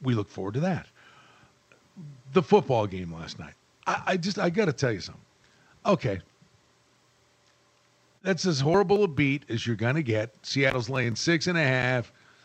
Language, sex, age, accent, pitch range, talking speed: English, male, 50-69, American, 130-185 Hz, 175 wpm